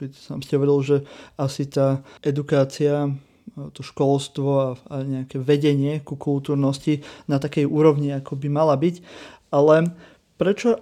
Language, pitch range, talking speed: Slovak, 140-155 Hz, 135 wpm